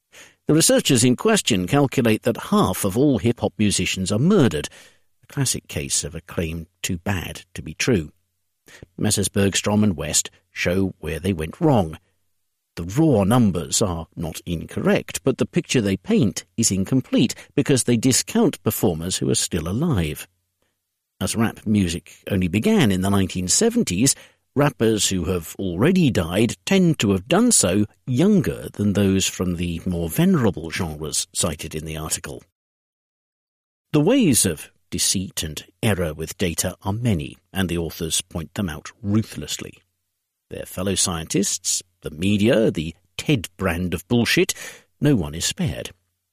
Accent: British